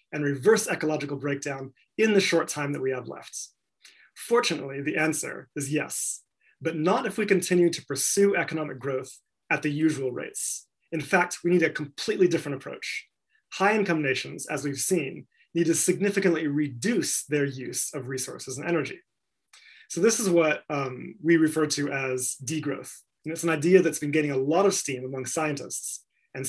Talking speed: 175 wpm